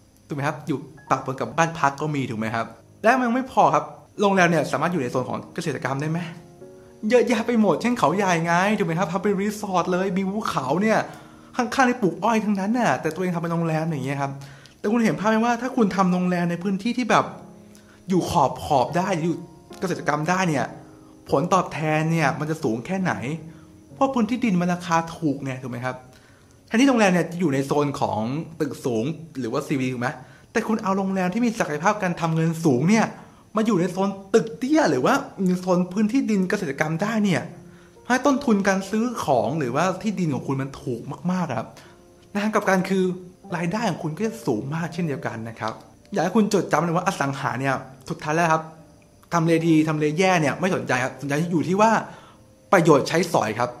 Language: English